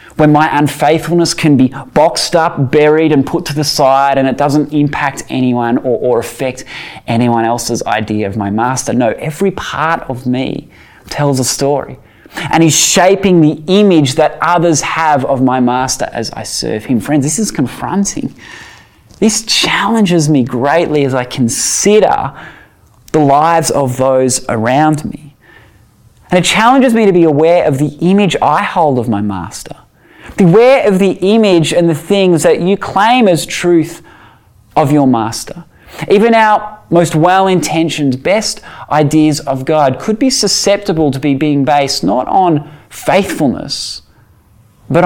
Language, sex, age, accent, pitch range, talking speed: English, male, 20-39, Australian, 130-175 Hz, 155 wpm